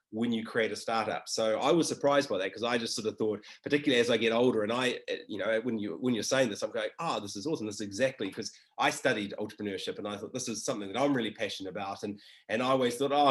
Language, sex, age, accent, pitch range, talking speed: English, male, 30-49, Australian, 105-135 Hz, 295 wpm